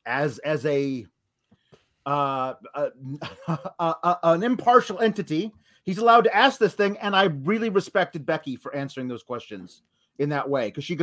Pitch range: 155-215 Hz